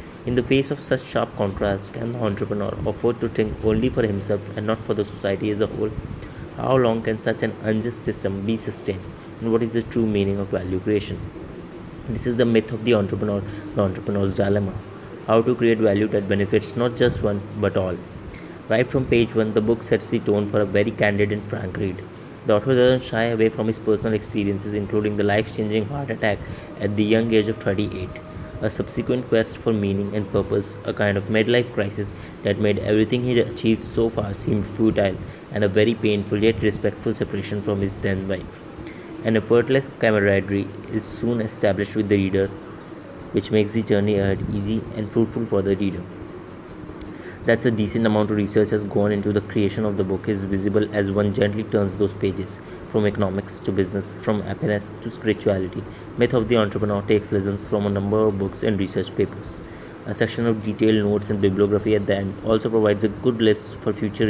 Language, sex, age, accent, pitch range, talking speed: English, male, 20-39, Indian, 100-115 Hz, 200 wpm